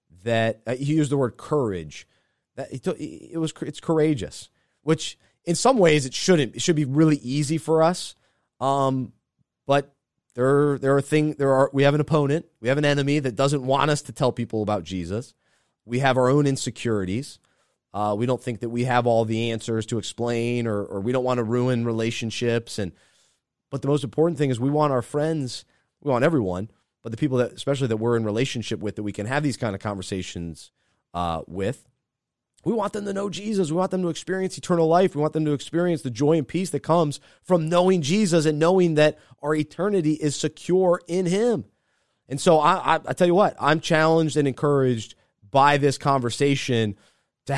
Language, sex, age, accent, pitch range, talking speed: English, male, 30-49, American, 115-155 Hz, 200 wpm